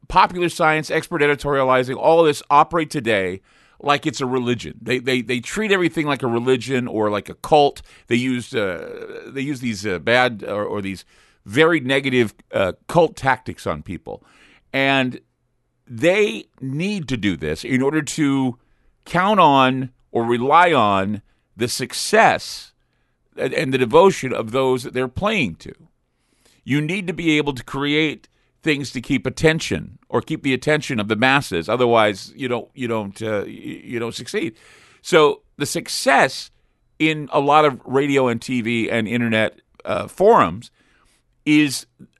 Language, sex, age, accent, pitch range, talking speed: English, male, 50-69, American, 115-150 Hz, 160 wpm